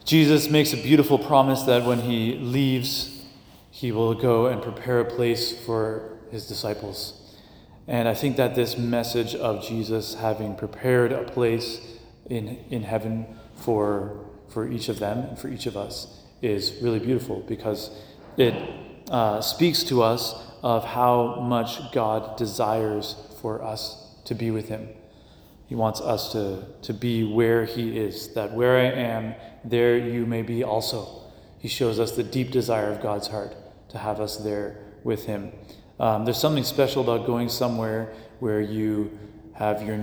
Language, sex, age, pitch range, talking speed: English, male, 30-49, 105-120 Hz, 160 wpm